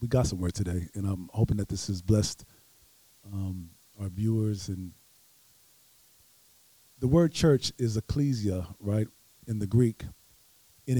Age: 40-59